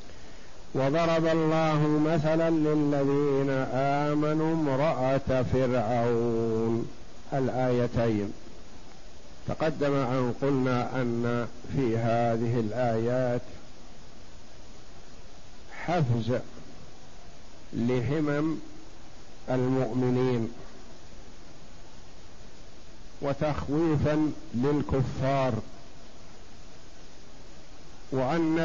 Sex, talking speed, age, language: male, 45 wpm, 50-69, Arabic